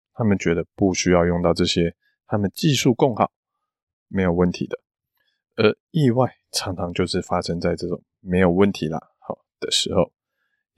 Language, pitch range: Chinese, 90-130 Hz